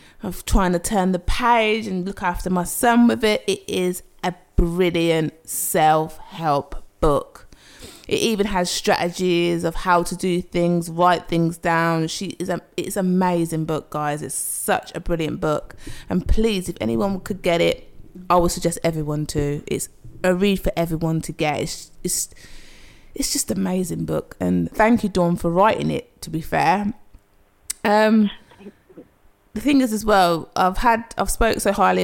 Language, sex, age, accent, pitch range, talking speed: English, female, 20-39, British, 160-190 Hz, 170 wpm